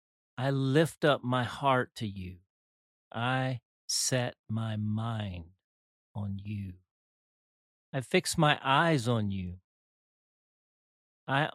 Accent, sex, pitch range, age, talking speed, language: American, male, 100-135 Hz, 40-59, 105 wpm, English